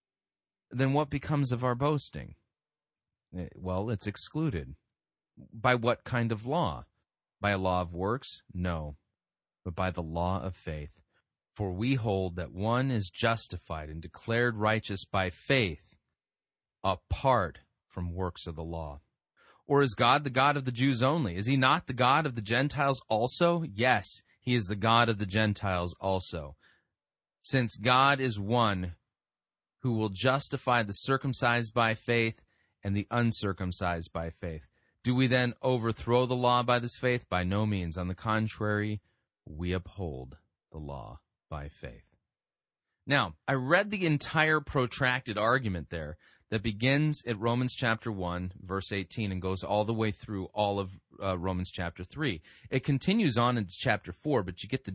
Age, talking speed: 30-49, 160 wpm